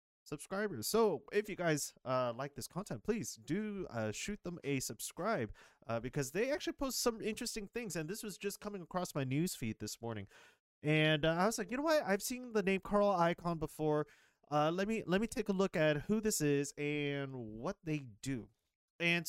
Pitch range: 110-180 Hz